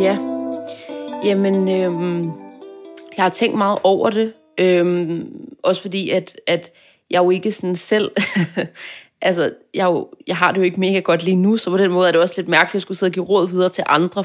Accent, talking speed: native, 210 wpm